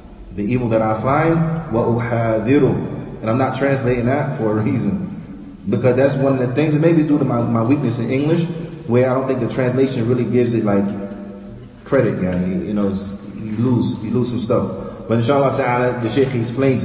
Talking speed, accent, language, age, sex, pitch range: 205 wpm, American, English, 30-49, male, 125-160 Hz